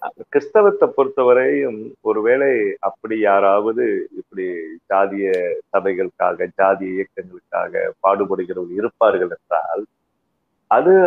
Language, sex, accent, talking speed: Tamil, male, native, 75 wpm